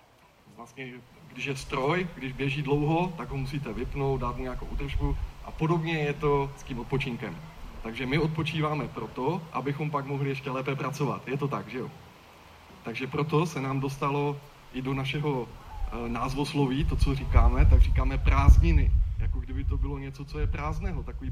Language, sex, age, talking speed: Czech, male, 20-39, 170 wpm